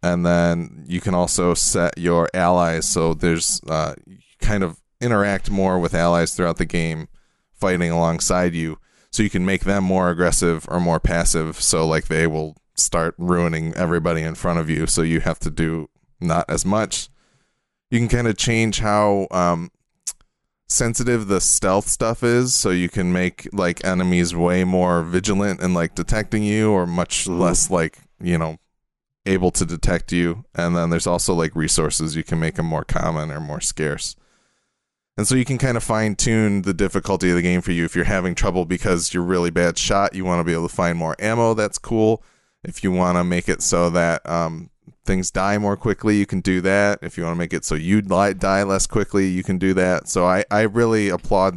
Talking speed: 200 wpm